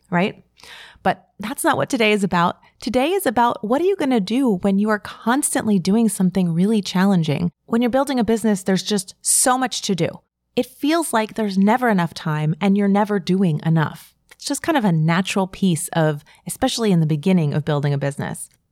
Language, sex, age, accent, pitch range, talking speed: English, female, 30-49, American, 175-220 Hz, 205 wpm